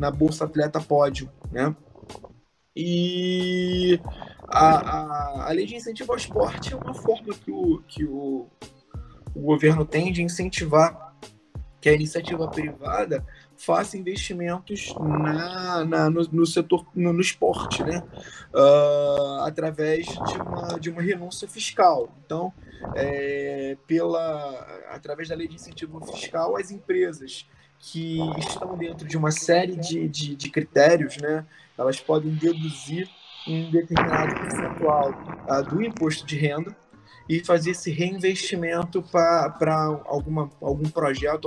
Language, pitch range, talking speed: Portuguese, 145-170 Hz, 130 wpm